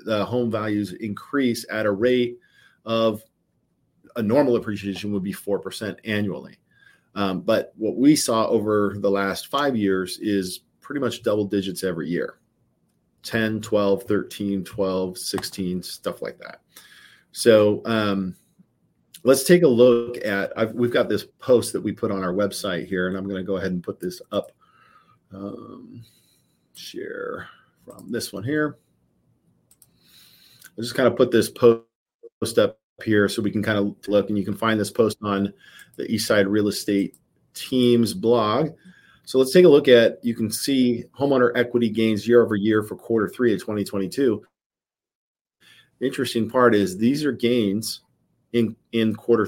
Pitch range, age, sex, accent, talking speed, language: 100-120 Hz, 40-59, male, American, 160 wpm, English